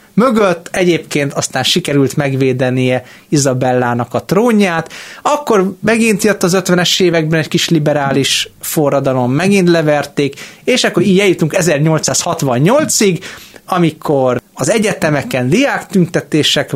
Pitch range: 130-180 Hz